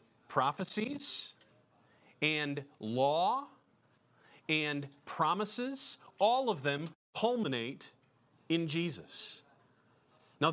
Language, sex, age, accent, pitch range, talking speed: English, male, 40-59, American, 155-215 Hz, 70 wpm